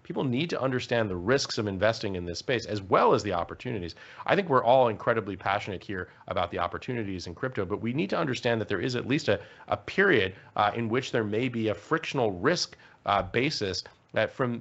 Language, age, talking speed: English, 30-49, 220 wpm